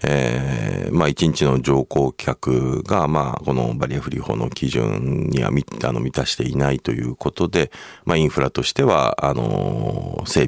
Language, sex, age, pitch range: Japanese, male, 40-59, 70-105 Hz